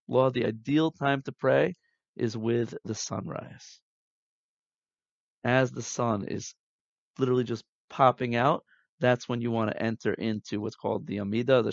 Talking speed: 155 wpm